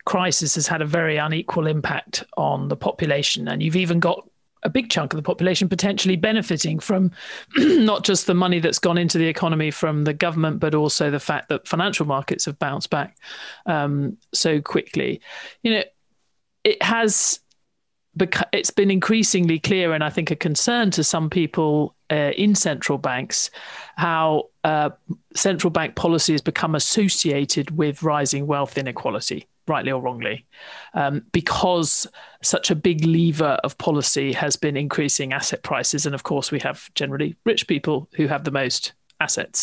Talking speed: 165 wpm